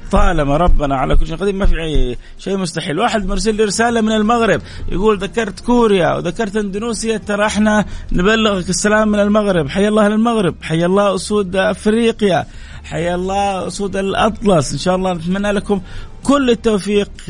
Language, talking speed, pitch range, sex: Arabic, 155 wpm, 135-200 Hz, male